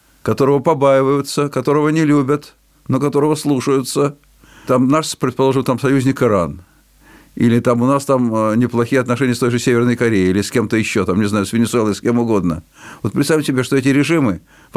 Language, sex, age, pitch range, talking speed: Russian, male, 50-69, 110-140 Hz, 185 wpm